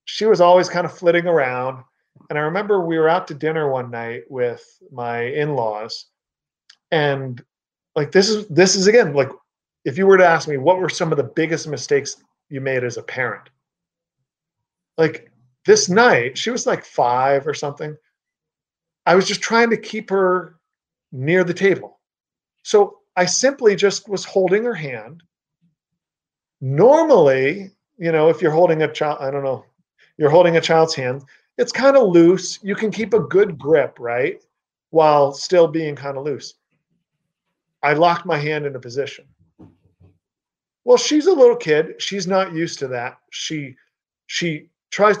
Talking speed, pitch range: 165 wpm, 145-200 Hz